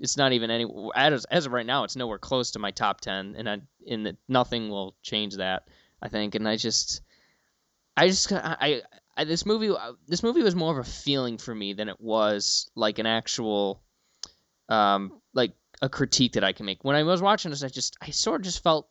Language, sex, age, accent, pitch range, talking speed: English, male, 20-39, American, 105-140 Hz, 220 wpm